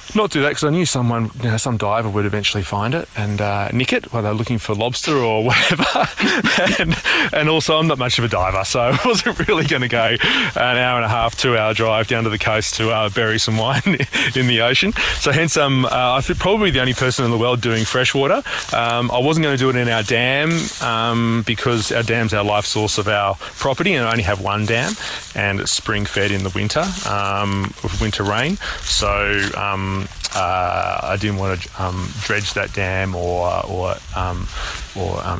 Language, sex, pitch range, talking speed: English, male, 105-130 Hz, 215 wpm